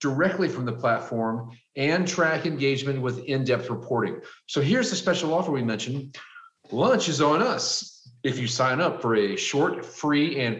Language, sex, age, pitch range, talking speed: English, male, 40-59, 120-165 Hz, 170 wpm